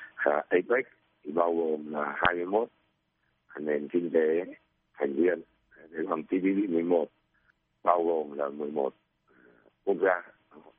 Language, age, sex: Vietnamese, 60-79, male